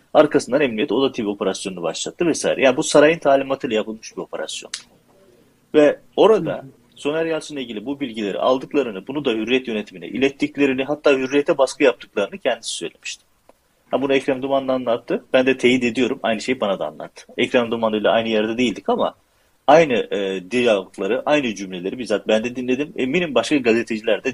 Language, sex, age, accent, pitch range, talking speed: Turkish, male, 40-59, native, 105-135 Hz, 170 wpm